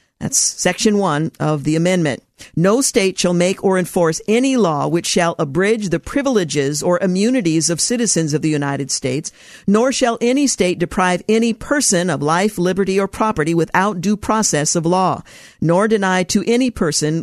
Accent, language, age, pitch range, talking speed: American, English, 50-69, 165-210 Hz, 170 wpm